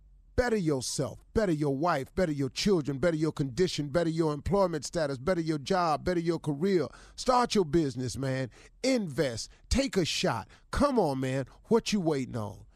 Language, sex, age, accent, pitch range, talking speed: English, male, 40-59, American, 125-175 Hz, 170 wpm